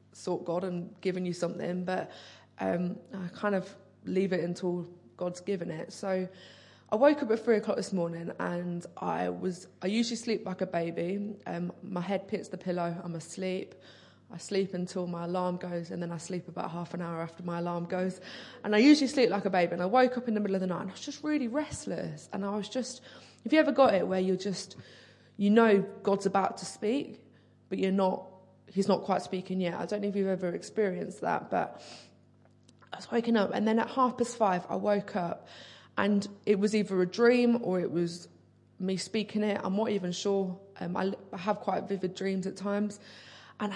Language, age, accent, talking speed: English, 20-39, British, 220 wpm